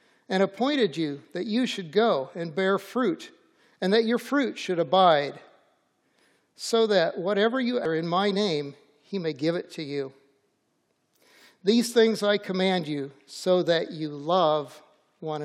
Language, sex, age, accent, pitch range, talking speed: English, male, 60-79, American, 165-205 Hz, 155 wpm